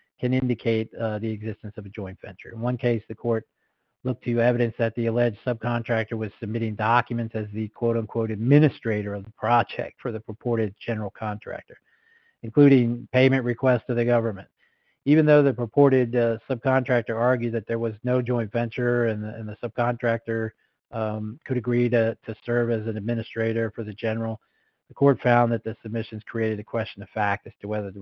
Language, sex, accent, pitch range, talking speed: English, male, American, 110-120 Hz, 185 wpm